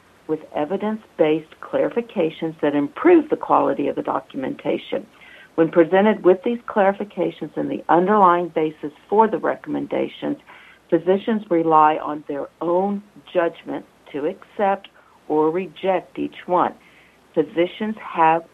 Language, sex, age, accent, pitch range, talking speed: English, female, 60-79, American, 155-195 Hz, 115 wpm